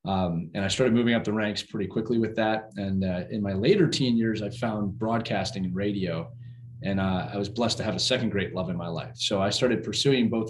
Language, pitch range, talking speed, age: English, 100-125 Hz, 245 wpm, 20-39